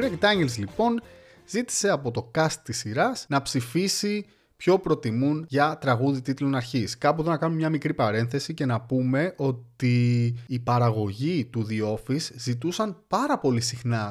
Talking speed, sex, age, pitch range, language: 155 wpm, male, 30-49, 120-170 Hz, Greek